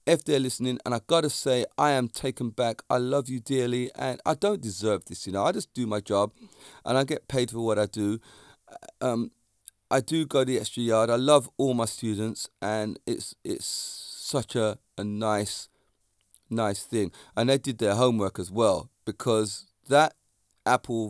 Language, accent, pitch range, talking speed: English, British, 105-130 Hz, 195 wpm